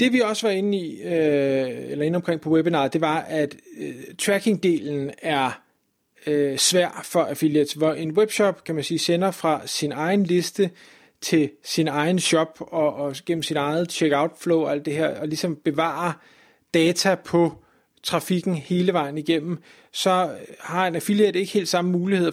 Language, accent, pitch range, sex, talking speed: Danish, native, 150-180 Hz, male, 175 wpm